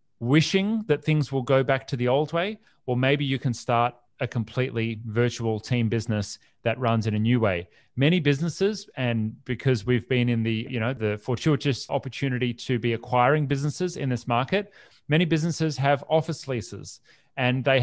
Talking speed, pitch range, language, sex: 180 wpm, 115-140 Hz, English, male